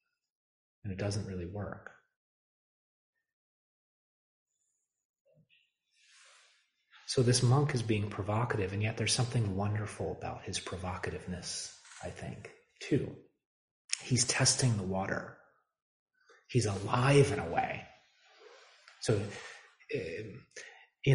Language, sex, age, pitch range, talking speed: English, male, 30-49, 95-130 Hz, 95 wpm